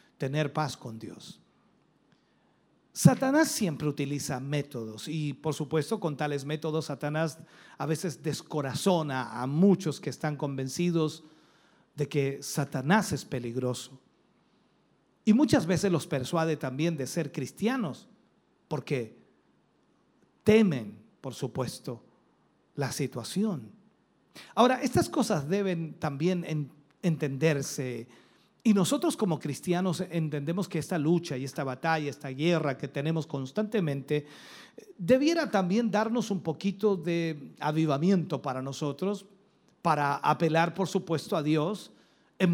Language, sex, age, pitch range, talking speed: Spanish, male, 40-59, 145-195 Hz, 115 wpm